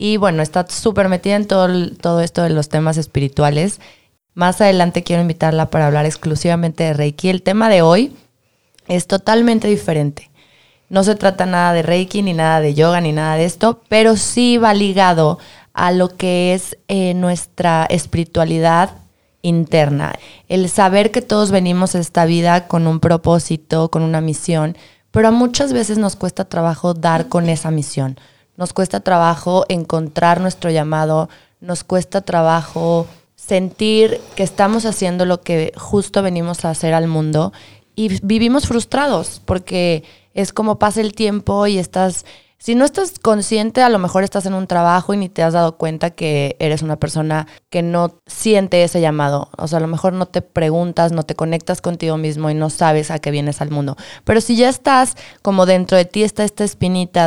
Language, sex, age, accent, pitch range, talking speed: Spanish, female, 20-39, Mexican, 160-195 Hz, 175 wpm